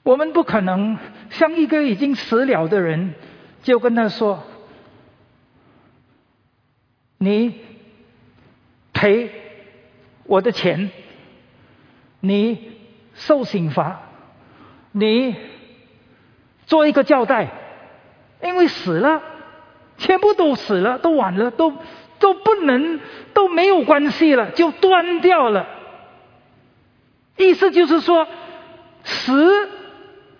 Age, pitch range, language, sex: 50-69, 205-320 Hz, Indonesian, male